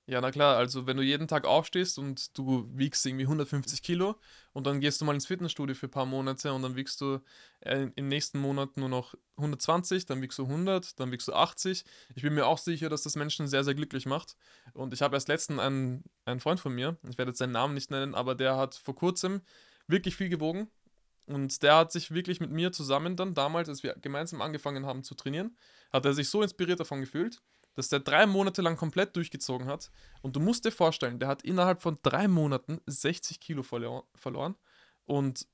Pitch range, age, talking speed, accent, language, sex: 135-165 Hz, 20-39, 215 wpm, German, German, male